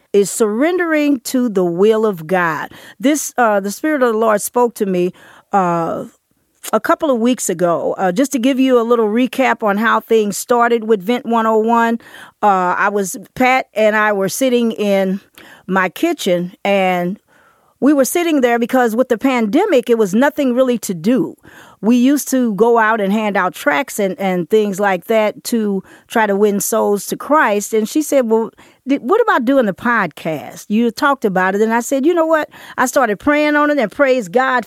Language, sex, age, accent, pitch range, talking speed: English, female, 40-59, American, 195-255 Hz, 195 wpm